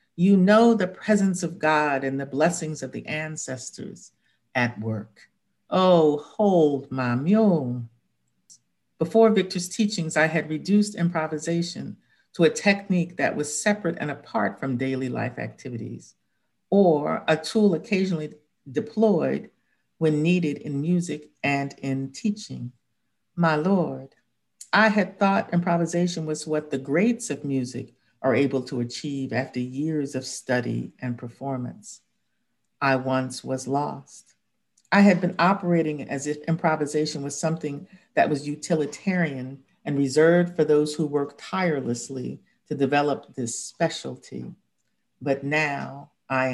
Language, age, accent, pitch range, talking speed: English, 50-69, American, 135-170 Hz, 130 wpm